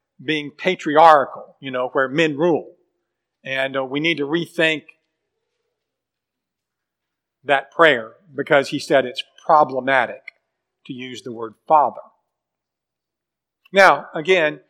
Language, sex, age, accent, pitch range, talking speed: English, male, 50-69, American, 150-190 Hz, 110 wpm